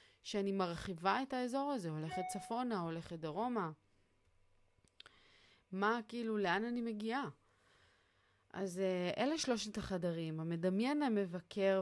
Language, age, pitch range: Hebrew, 30-49, 165-200 Hz